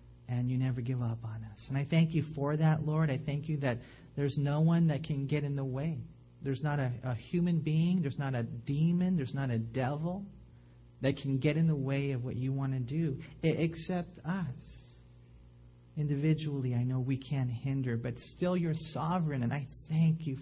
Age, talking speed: 40-59, 205 wpm